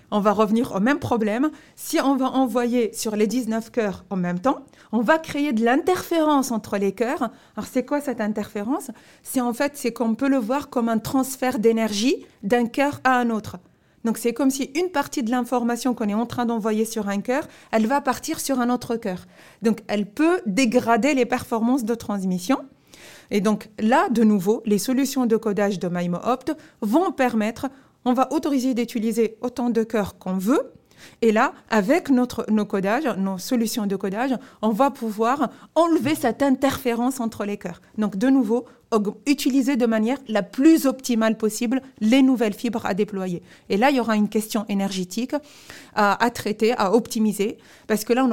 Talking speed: 185 wpm